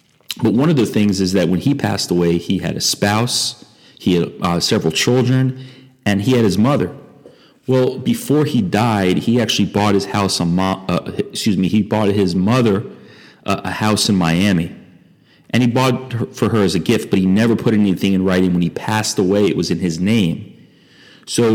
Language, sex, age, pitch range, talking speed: English, male, 40-59, 95-120 Hz, 200 wpm